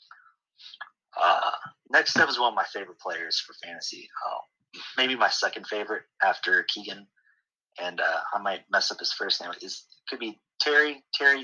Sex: male